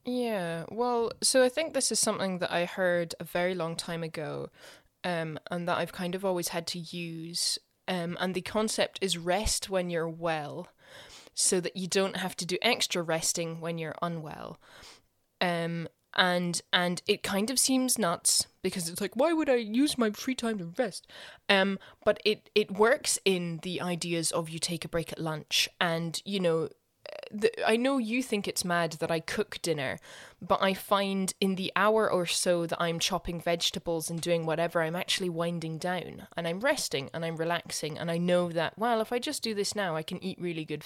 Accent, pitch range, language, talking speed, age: British, 170-210 Hz, English, 200 wpm, 20-39